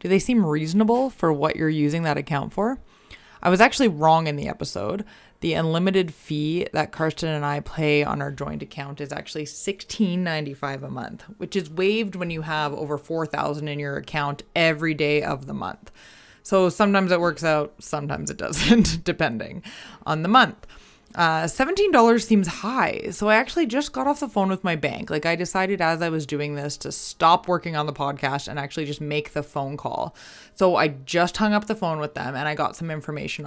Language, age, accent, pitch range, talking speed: English, 20-39, American, 150-195 Hz, 205 wpm